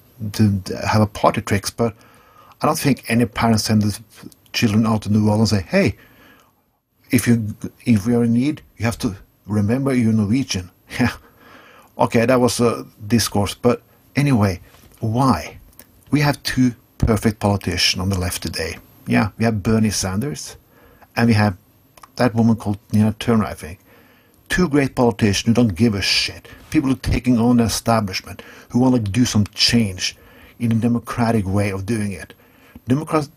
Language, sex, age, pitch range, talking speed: English, male, 60-79, 105-120 Hz, 175 wpm